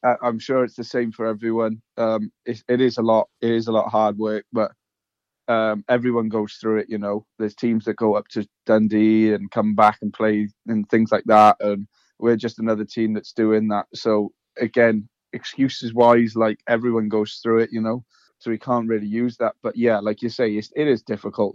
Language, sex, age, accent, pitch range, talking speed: English, male, 20-39, British, 105-115 Hz, 215 wpm